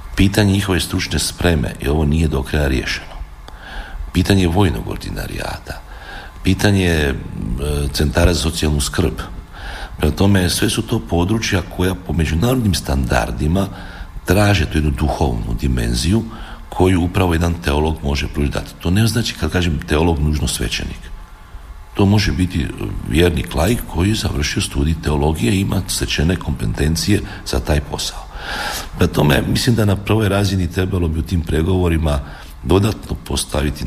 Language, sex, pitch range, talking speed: Croatian, male, 75-95 Hz, 140 wpm